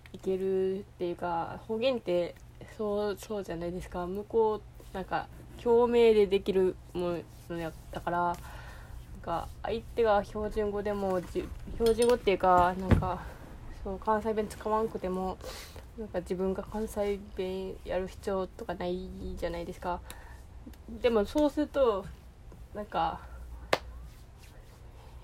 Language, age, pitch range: Japanese, 20-39, 175-225 Hz